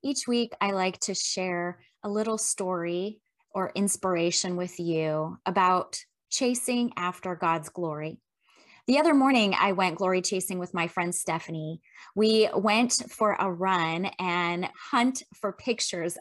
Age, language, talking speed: 20-39, English, 140 wpm